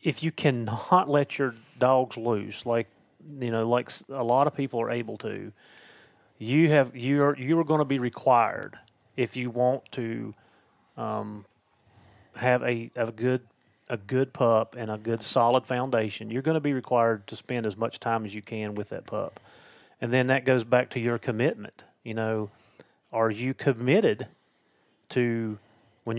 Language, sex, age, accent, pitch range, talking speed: English, male, 30-49, American, 115-135 Hz, 175 wpm